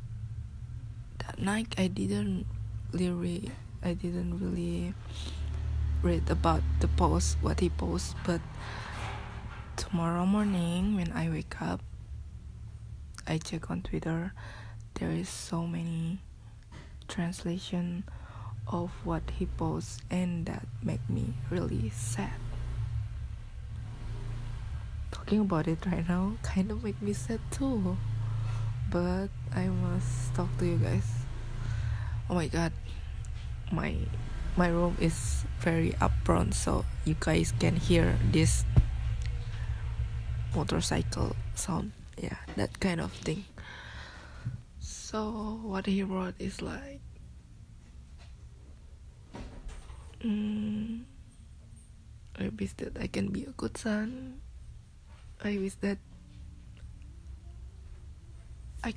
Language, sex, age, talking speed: English, female, 20-39, 100 wpm